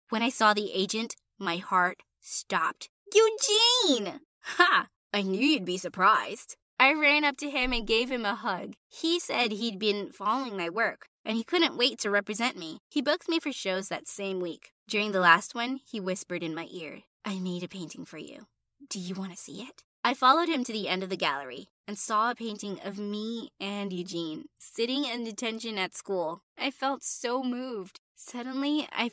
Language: English